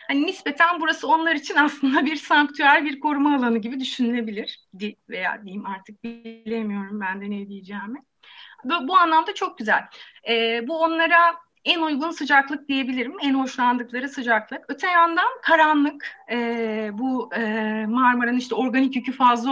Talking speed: 145 wpm